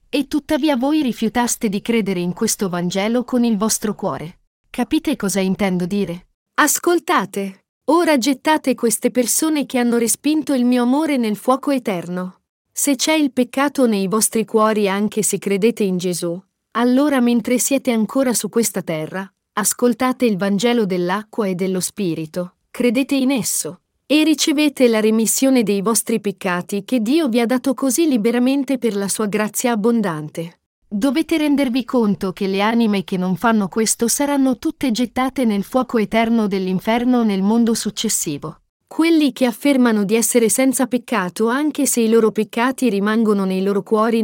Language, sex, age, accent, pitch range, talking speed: Italian, female, 40-59, native, 200-255 Hz, 155 wpm